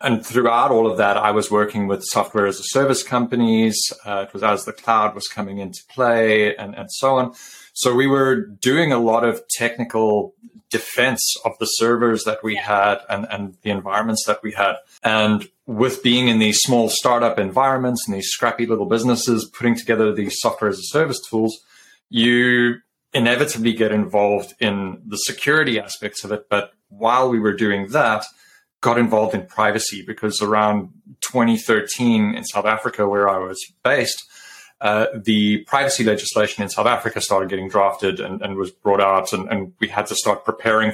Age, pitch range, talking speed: 30-49, 105-120 Hz, 180 wpm